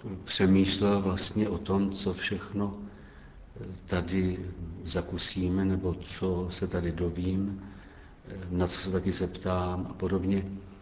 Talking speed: 110 wpm